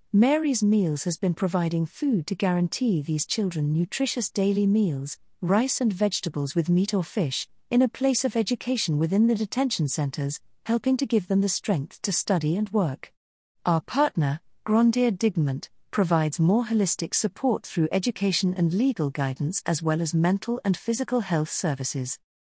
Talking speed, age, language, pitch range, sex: 160 wpm, 40-59, English, 160-215 Hz, female